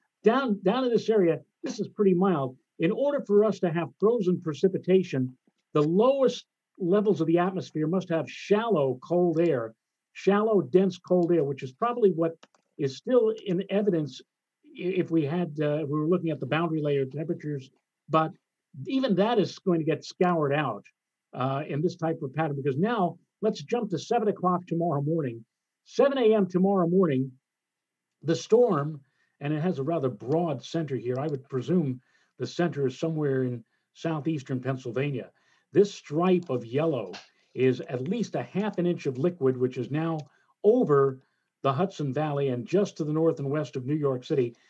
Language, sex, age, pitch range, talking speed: English, male, 50-69, 145-195 Hz, 175 wpm